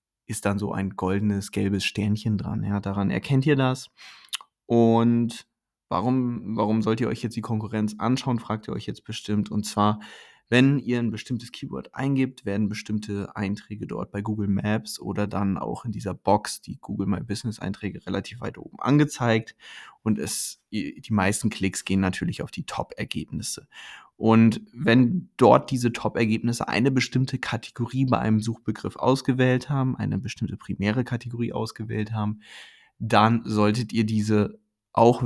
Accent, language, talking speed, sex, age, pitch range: German, German, 155 wpm, male, 20-39, 105-125 Hz